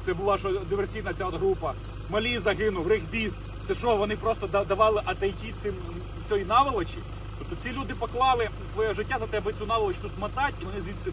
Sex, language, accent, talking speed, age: male, Russian, native, 185 wpm, 30-49